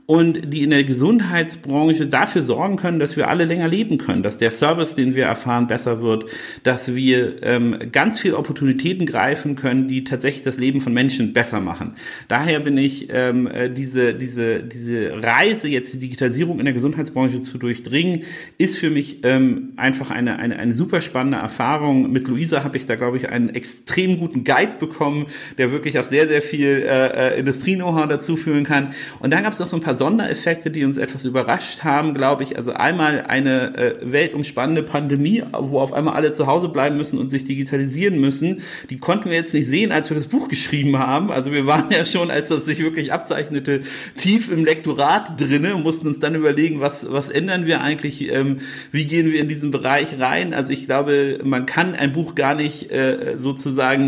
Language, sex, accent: German, male, German